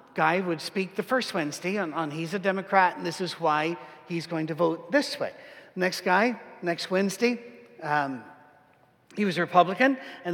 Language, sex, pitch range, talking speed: English, male, 165-215 Hz, 180 wpm